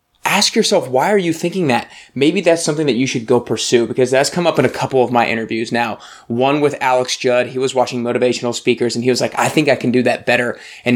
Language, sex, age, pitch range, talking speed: English, male, 20-39, 120-130 Hz, 255 wpm